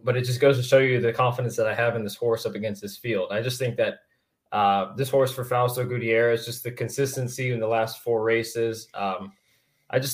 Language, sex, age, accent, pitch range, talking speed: English, male, 20-39, American, 110-130 Hz, 235 wpm